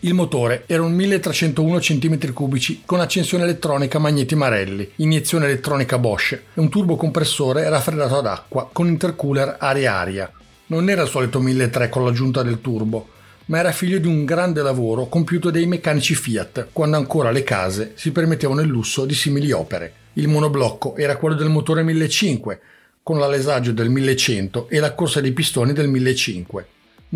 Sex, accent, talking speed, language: male, native, 160 wpm, Italian